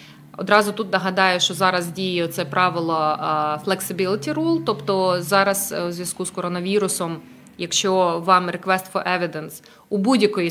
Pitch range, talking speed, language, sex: 170-200 Hz, 130 wpm, English, female